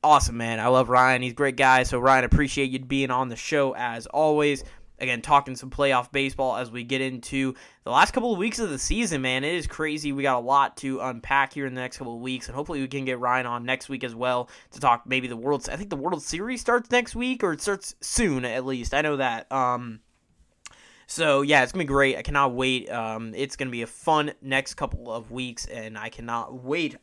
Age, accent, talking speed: 20-39, American, 250 wpm